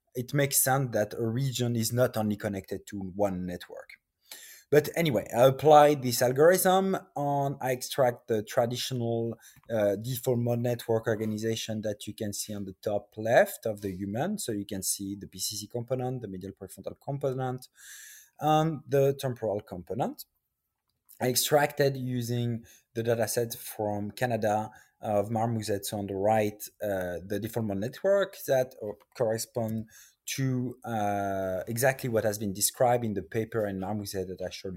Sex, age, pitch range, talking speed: male, 20-39, 105-130 Hz, 160 wpm